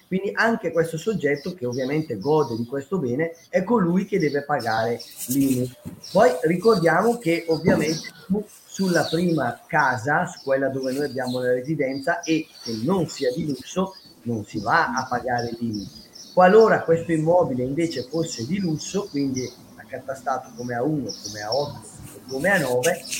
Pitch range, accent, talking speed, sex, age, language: 130-170 Hz, native, 145 wpm, male, 30-49, Italian